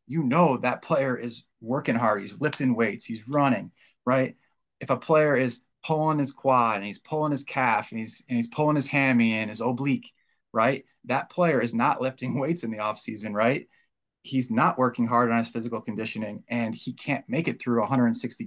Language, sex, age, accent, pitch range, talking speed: English, male, 30-49, American, 120-145 Hz, 205 wpm